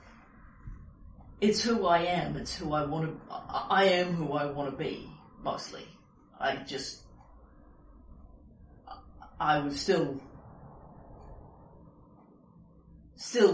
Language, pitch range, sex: English, 150-240 Hz, female